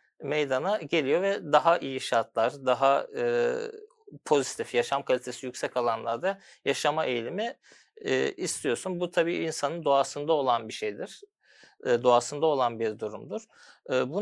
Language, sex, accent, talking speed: Turkish, male, native, 130 wpm